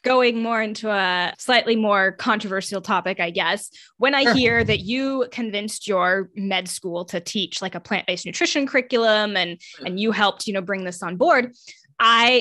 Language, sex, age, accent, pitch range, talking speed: English, female, 10-29, American, 185-230 Hz, 180 wpm